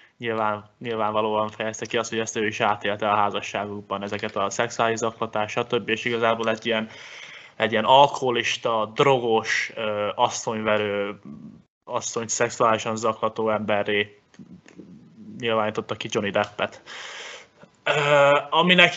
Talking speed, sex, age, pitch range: 115 wpm, male, 20-39, 110-130 Hz